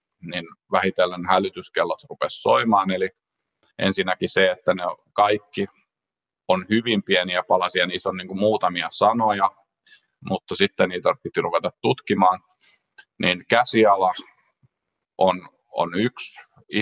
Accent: native